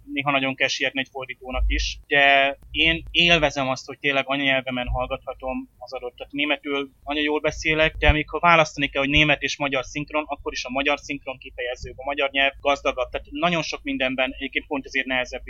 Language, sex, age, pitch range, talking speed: Hungarian, male, 20-39, 130-145 Hz, 185 wpm